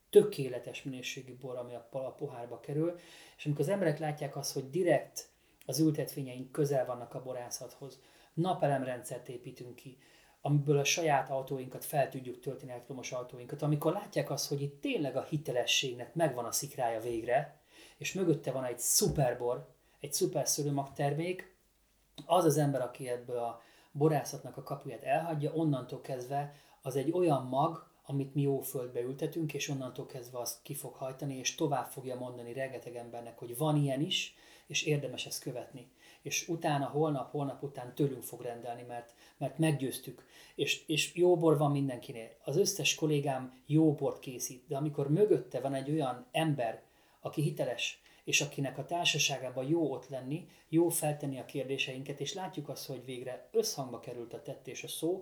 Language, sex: Hungarian, male